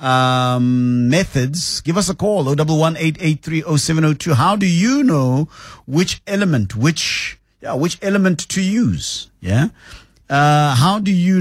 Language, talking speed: English, 130 wpm